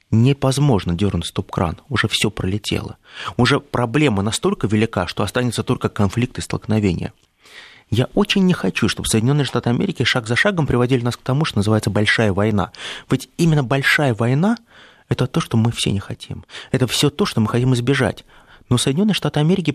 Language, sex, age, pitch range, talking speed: Russian, male, 30-49, 105-135 Hz, 175 wpm